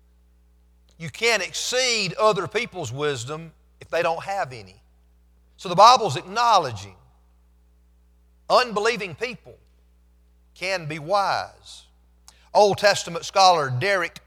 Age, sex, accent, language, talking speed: 50-69, male, American, English, 100 wpm